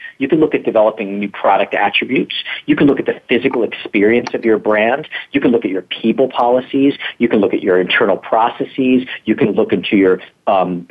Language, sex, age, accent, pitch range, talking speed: English, male, 40-59, American, 110-170 Hz, 210 wpm